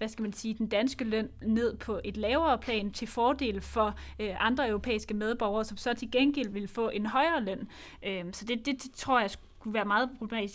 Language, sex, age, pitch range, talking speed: Danish, female, 20-39, 215-255 Hz, 220 wpm